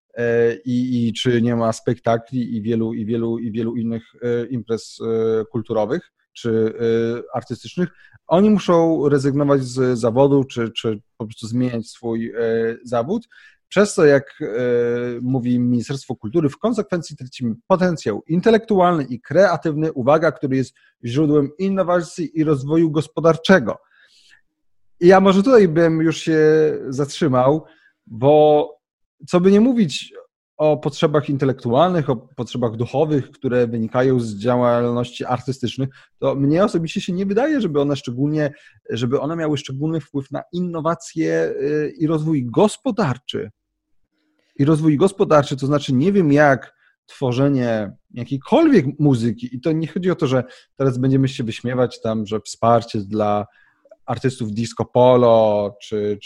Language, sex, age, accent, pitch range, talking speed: Polish, male, 30-49, native, 115-160 Hz, 125 wpm